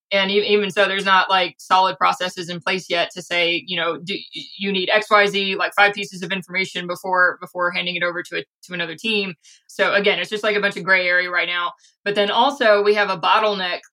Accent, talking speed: American, 230 wpm